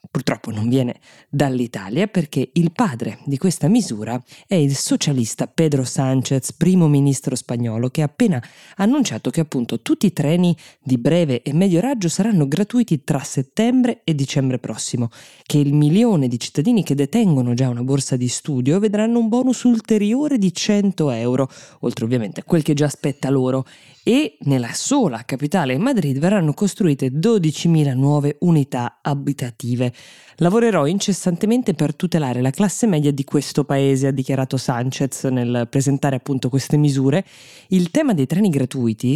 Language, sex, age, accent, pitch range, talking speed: Italian, female, 20-39, native, 130-175 Hz, 155 wpm